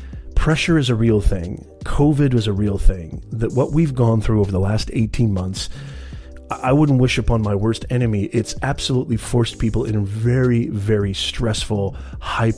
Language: English